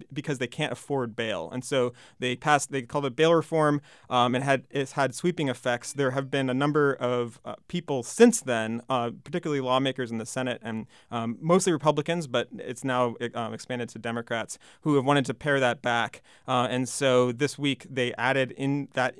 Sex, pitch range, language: male, 125-145 Hz, English